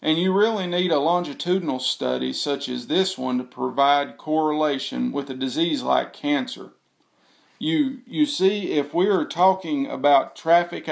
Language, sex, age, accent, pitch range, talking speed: English, male, 40-59, American, 140-185 Hz, 150 wpm